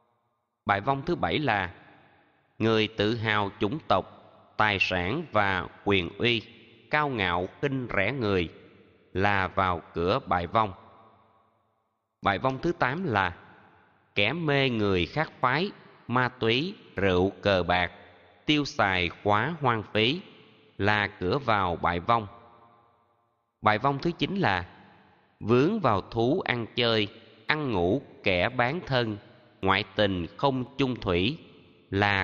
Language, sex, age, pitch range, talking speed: Vietnamese, male, 20-39, 95-120 Hz, 130 wpm